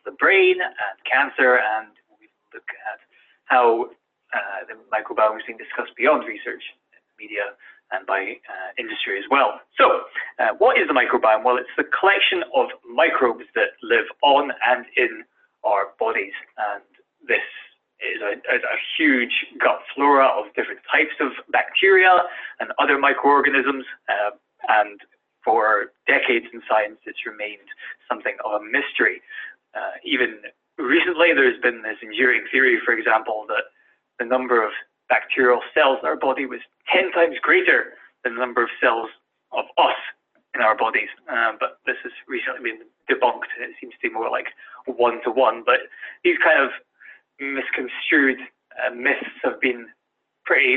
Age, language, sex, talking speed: 30-49, English, male, 155 wpm